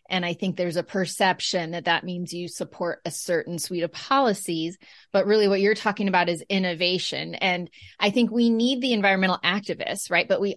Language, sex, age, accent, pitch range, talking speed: English, female, 30-49, American, 175-215 Hz, 200 wpm